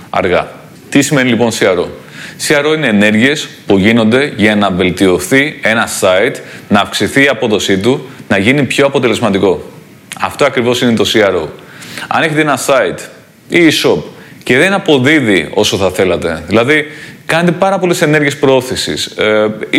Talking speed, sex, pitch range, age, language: 145 wpm, male, 110-150 Hz, 30-49, Greek